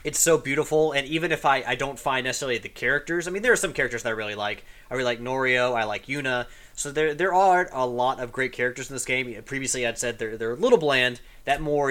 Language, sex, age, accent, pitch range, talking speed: English, male, 30-49, American, 120-145 Hz, 260 wpm